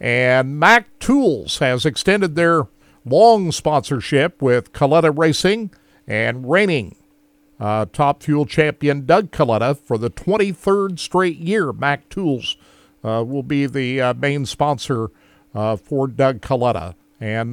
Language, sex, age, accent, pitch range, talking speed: English, male, 50-69, American, 130-180 Hz, 130 wpm